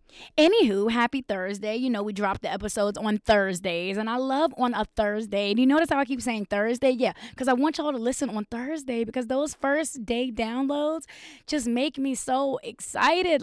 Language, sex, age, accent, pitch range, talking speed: English, female, 20-39, American, 210-290 Hz, 195 wpm